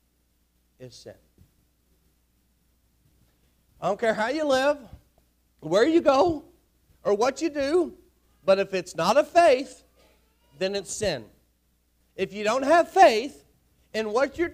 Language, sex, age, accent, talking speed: English, male, 40-59, American, 130 wpm